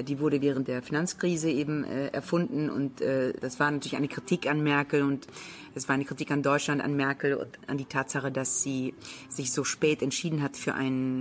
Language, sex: German, female